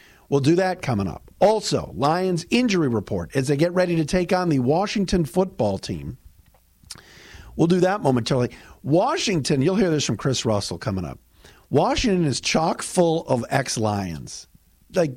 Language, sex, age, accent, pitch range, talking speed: English, male, 50-69, American, 120-190 Hz, 160 wpm